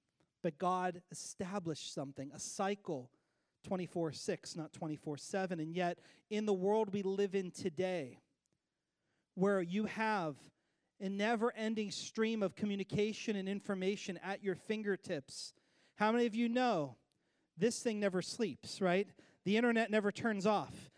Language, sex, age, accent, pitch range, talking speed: English, male, 40-59, American, 165-220 Hz, 130 wpm